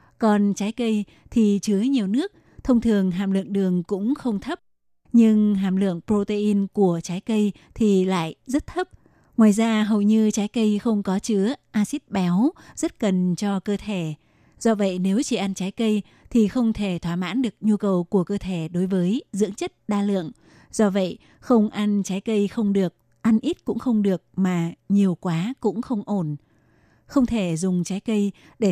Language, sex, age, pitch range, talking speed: Vietnamese, female, 20-39, 190-225 Hz, 190 wpm